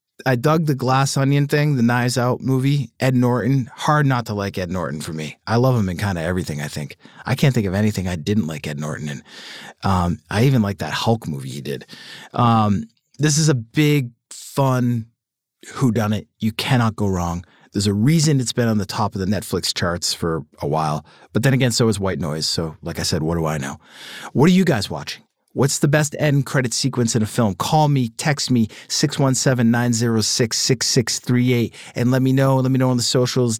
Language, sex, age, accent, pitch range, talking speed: English, male, 30-49, American, 105-145 Hz, 215 wpm